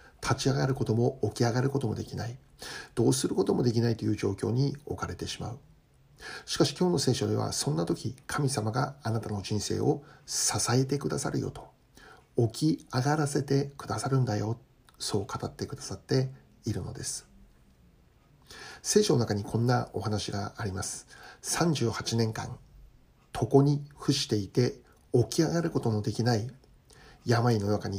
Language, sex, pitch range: Japanese, male, 105-135 Hz